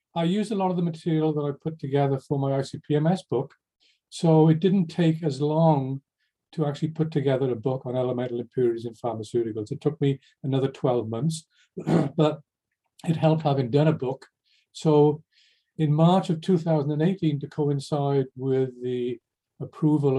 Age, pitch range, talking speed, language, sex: 50-69, 130-155 Hz, 165 wpm, English, male